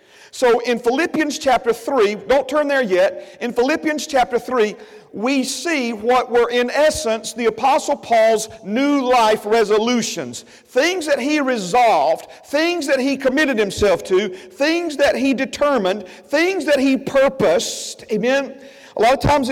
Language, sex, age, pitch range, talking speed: English, male, 50-69, 225-280 Hz, 150 wpm